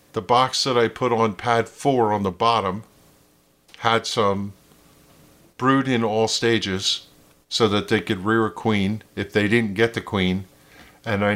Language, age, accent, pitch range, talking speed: English, 50-69, American, 90-115 Hz, 170 wpm